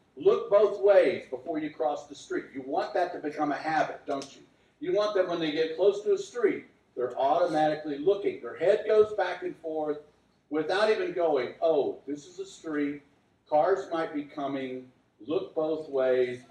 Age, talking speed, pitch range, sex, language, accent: 50-69, 185 wpm, 135-215 Hz, male, English, American